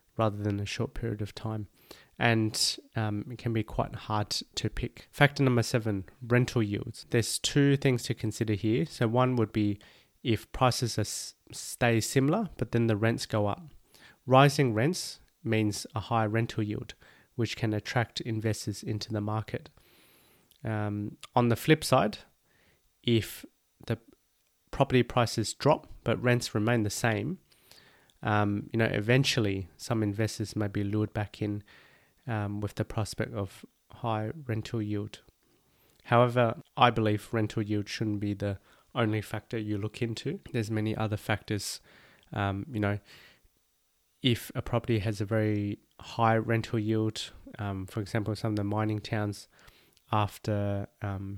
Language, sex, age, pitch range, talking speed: English, male, 30-49, 105-120 Hz, 150 wpm